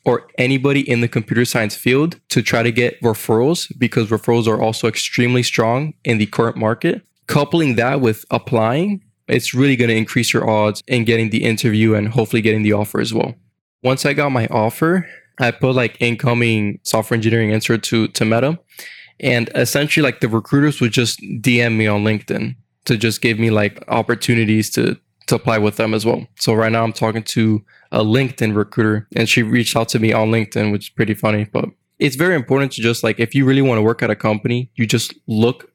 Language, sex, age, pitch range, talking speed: English, male, 20-39, 110-130 Hz, 205 wpm